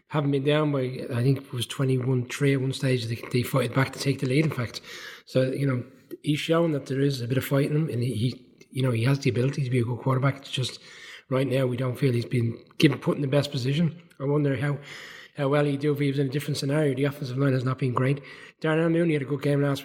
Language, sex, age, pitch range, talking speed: English, male, 20-39, 125-145 Hz, 280 wpm